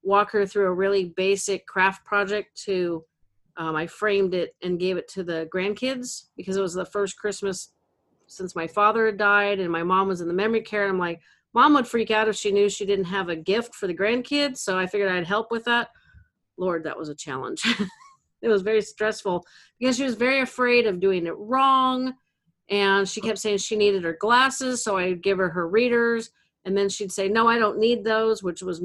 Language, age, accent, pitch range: English, 40-59, American, 185-230 Hz